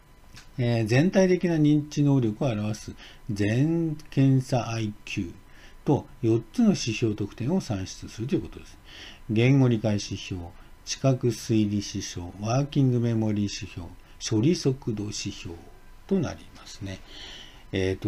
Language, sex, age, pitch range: Japanese, male, 50-69, 95-135 Hz